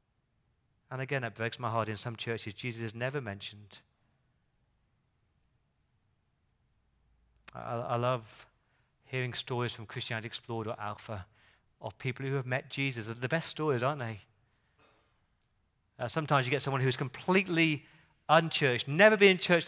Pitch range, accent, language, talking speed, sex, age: 120-180 Hz, British, English, 145 wpm, male, 40-59